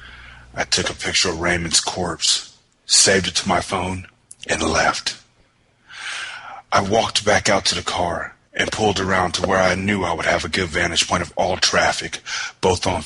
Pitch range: 85-100 Hz